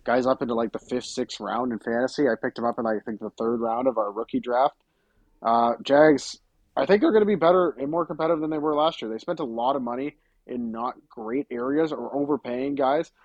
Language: English